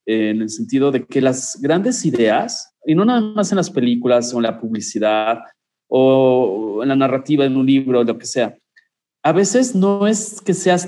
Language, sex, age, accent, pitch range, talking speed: Spanish, male, 40-59, Mexican, 125-170 Hz, 200 wpm